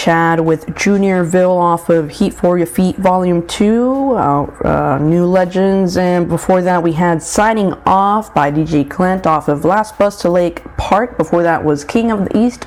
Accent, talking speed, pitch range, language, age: American, 185 wpm, 160-195 Hz, English, 20-39